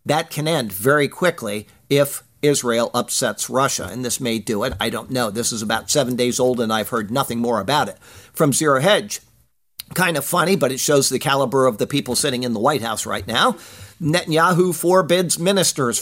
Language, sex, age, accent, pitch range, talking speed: English, male, 50-69, American, 130-175 Hz, 200 wpm